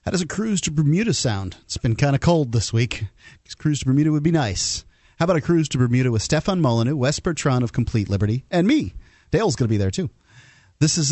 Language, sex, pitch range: English, male, 110-150 Hz